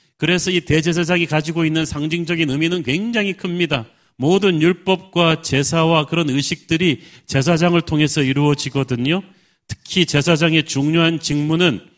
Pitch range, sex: 135-165 Hz, male